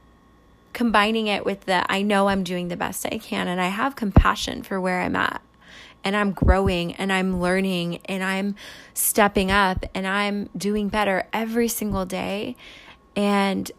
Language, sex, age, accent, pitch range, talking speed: English, female, 20-39, American, 190-235 Hz, 165 wpm